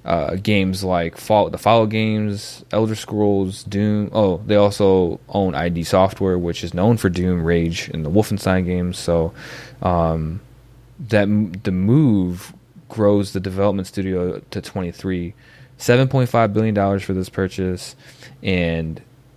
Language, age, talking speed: English, 20-39, 145 wpm